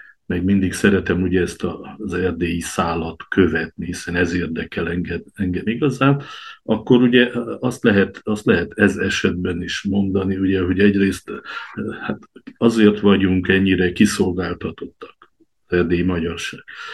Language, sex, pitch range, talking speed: Hungarian, male, 90-105 Hz, 105 wpm